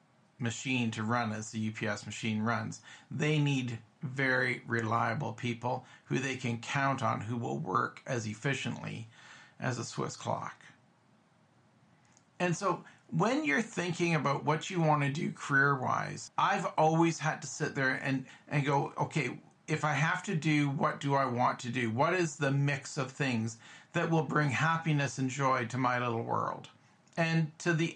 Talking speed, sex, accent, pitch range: 170 wpm, male, American, 130-165 Hz